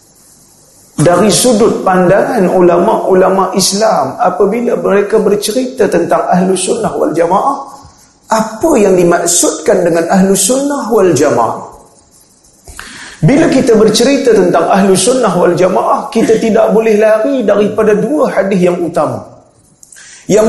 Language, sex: Malay, male